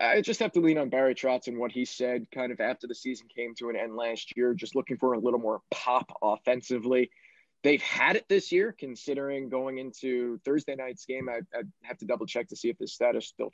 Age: 20-39